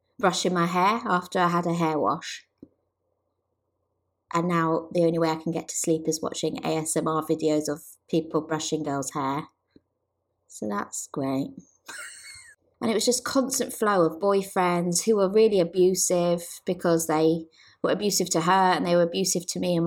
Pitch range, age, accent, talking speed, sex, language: 165-210 Hz, 20-39, British, 170 wpm, female, English